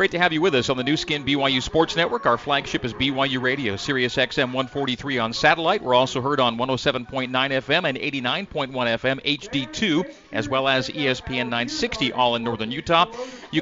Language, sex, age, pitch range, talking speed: English, male, 40-59, 125-160 Hz, 190 wpm